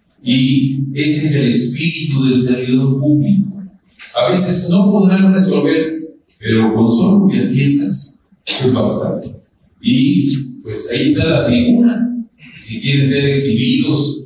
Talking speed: 125 wpm